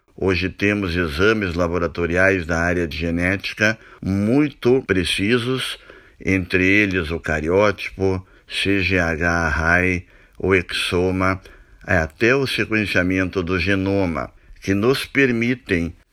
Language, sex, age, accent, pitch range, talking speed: Portuguese, male, 60-79, Brazilian, 90-105 Hz, 95 wpm